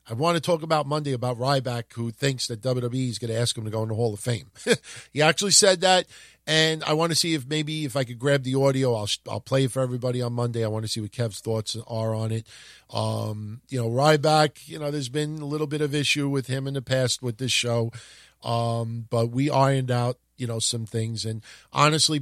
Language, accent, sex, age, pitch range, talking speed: English, American, male, 50-69, 120-155 Hz, 245 wpm